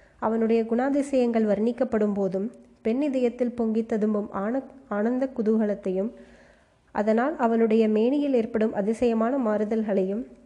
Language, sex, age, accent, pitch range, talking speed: Tamil, female, 20-39, native, 210-250 Hz, 100 wpm